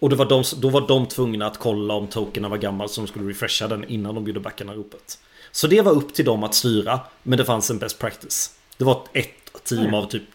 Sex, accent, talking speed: male, native, 250 wpm